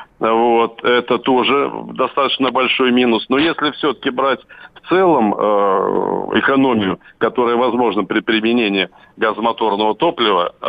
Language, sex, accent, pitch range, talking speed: Russian, male, native, 115-135 Hz, 120 wpm